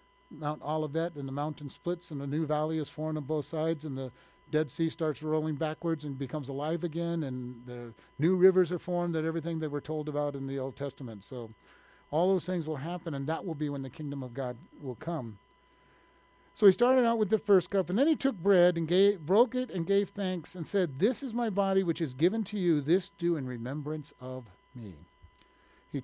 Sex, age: male, 50-69